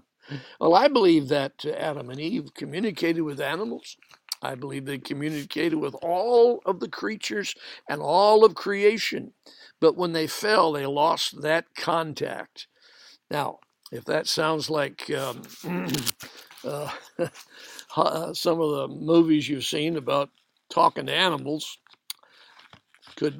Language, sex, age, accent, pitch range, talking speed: English, male, 60-79, American, 150-180 Hz, 125 wpm